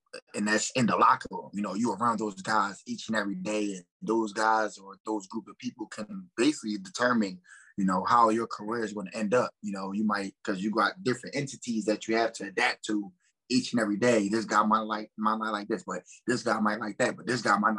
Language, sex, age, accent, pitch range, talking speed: English, male, 20-39, American, 105-120 Hz, 250 wpm